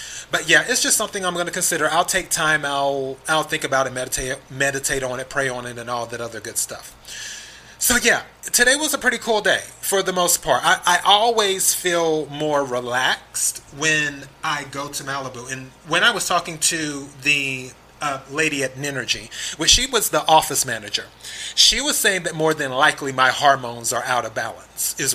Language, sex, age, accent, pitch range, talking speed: English, male, 30-49, American, 135-175 Hz, 200 wpm